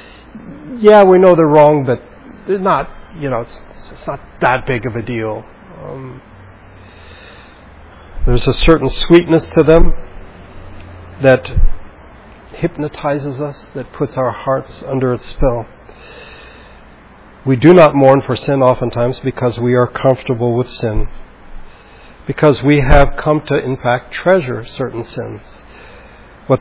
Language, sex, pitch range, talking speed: English, male, 115-150 Hz, 125 wpm